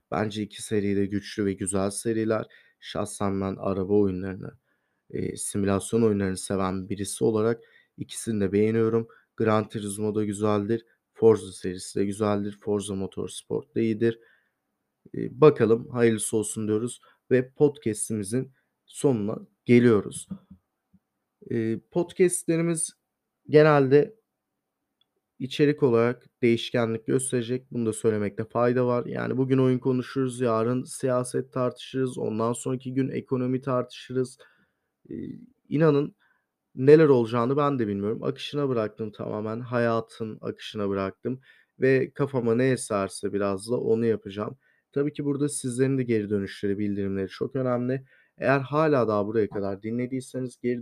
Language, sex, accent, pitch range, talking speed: Turkish, male, native, 105-130 Hz, 115 wpm